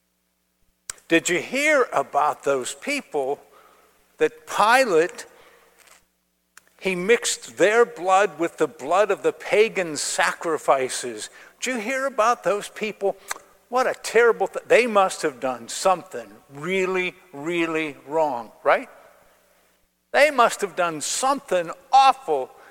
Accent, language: American, English